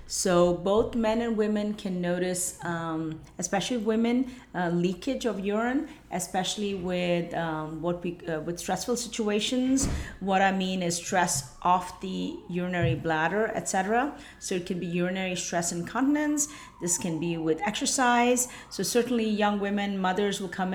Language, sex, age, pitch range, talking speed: English, female, 30-49, 175-220 Hz, 150 wpm